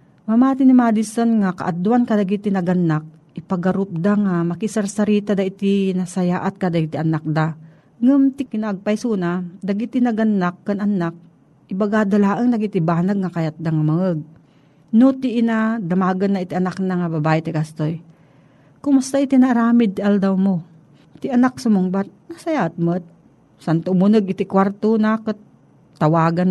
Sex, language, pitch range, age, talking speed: female, Filipino, 165-210 Hz, 40-59, 140 wpm